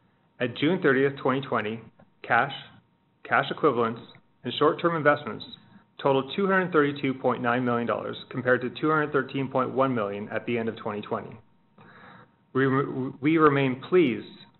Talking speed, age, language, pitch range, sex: 105 wpm, 30-49, English, 120-145 Hz, male